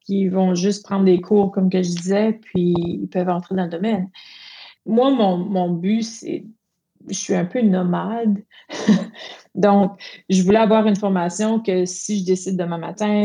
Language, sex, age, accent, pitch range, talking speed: French, female, 30-49, Canadian, 175-205 Hz, 175 wpm